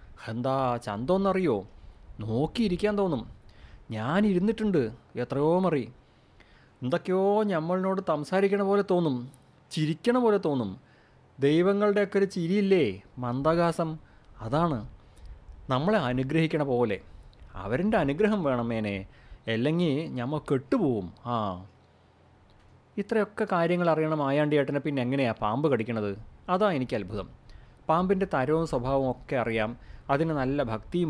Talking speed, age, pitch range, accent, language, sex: 95 wpm, 30-49, 110-165 Hz, native, Malayalam, male